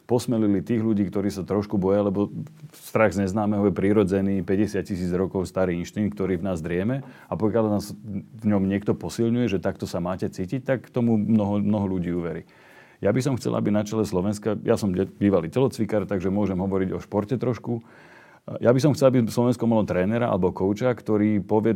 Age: 40-59